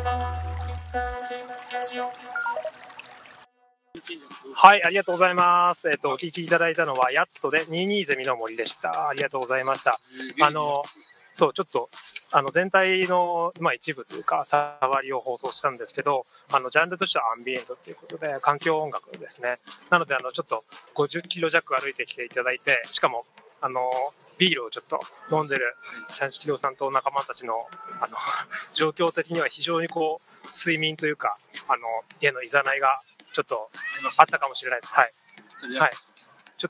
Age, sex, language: 20-39, male, Japanese